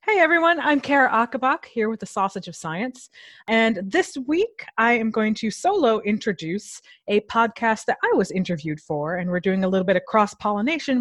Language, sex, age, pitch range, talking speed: English, female, 30-49, 185-245 Hz, 190 wpm